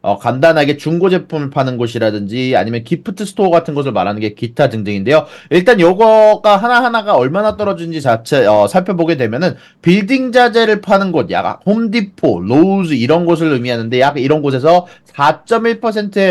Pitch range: 135-210 Hz